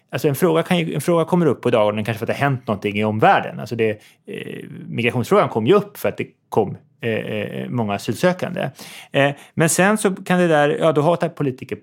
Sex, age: male, 30-49